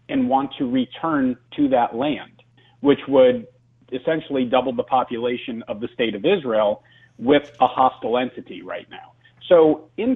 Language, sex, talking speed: English, male, 155 wpm